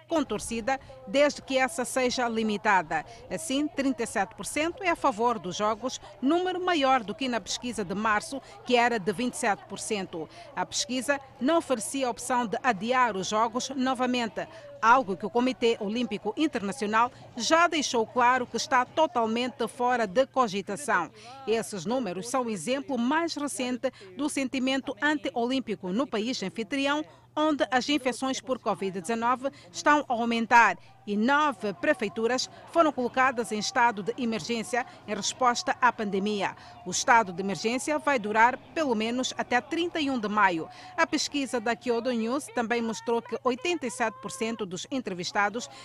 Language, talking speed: Portuguese, 145 wpm